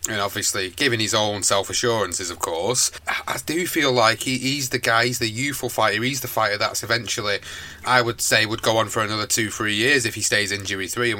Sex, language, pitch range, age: male, English, 105-125 Hz, 30-49